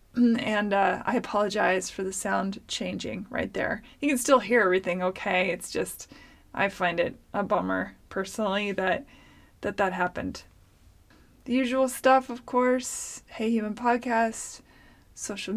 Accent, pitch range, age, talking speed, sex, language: American, 195-235 Hz, 20-39, 145 wpm, female, English